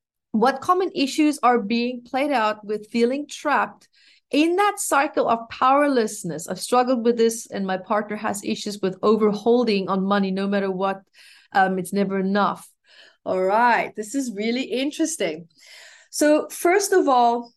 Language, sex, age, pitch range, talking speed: English, female, 30-49, 215-300 Hz, 155 wpm